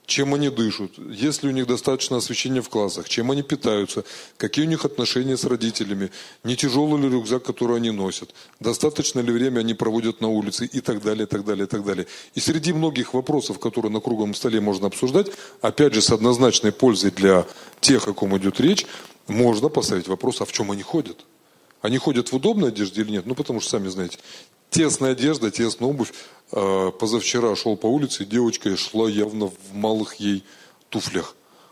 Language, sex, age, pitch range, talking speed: Russian, male, 30-49, 100-130 Hz, 190 wpm